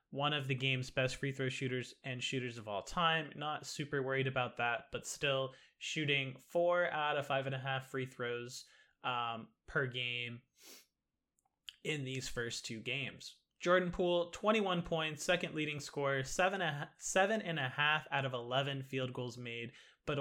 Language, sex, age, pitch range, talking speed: English, male, 20-39, 130-155 Hz, 170 wpm